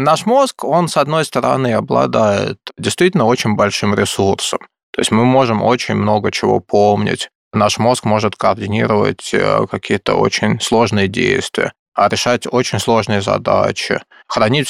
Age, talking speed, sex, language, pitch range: 20-39, 130 wpm, male, Russian, 105-125 Hz